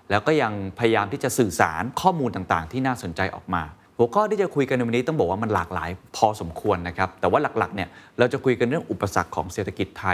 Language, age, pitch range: Thai, 20-39, 95-130 Hz